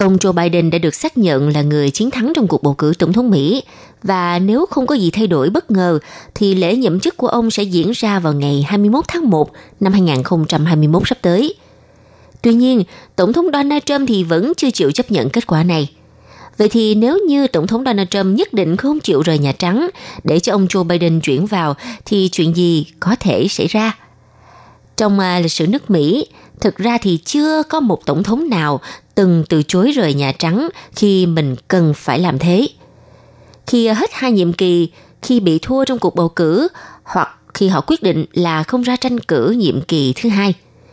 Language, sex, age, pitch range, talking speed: Vietnamese, female, 20-39, 165-230 Hz, 205 wpm